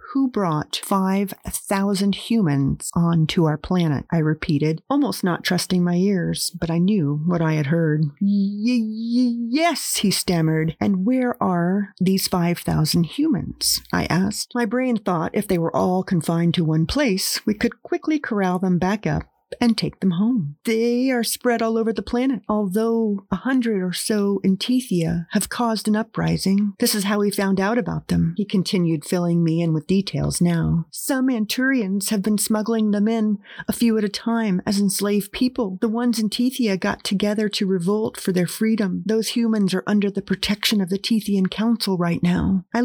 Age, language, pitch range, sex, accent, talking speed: 40-59, English, 175-225 Hz, female, American, 180 wpm